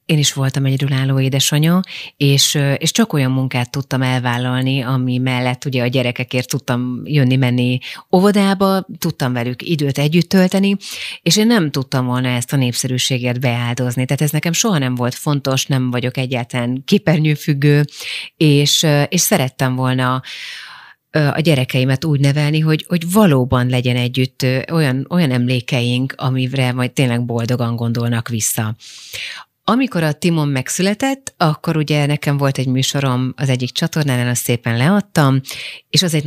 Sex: female